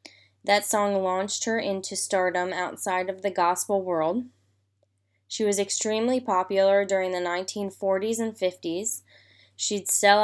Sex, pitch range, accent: female, 175-200 Hz, American